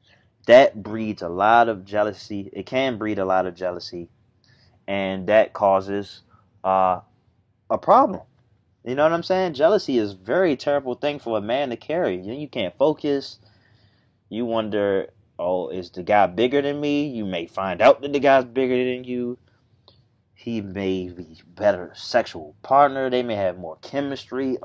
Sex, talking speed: male, 165 wpm